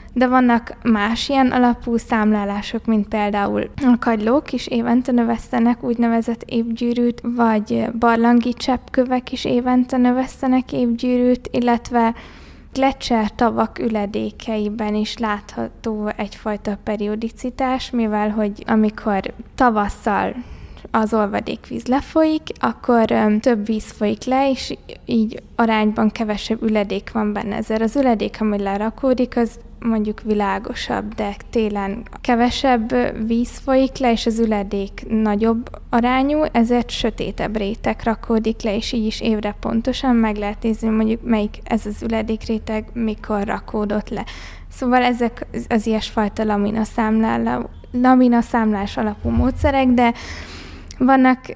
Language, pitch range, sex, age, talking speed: Hungarian, 215-245 Hz, female, 20-39, 120 wpm